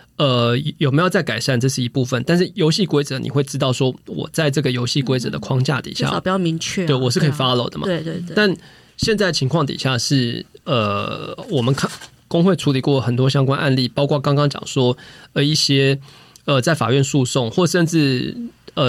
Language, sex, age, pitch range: Chinese, male, 20-39, 130-165 Hz